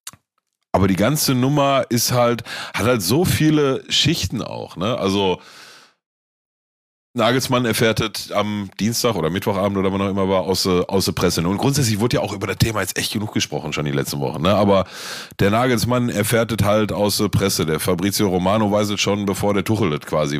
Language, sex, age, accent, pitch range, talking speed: German, male, 30-49, German, 95-120 Hz, 180 wpm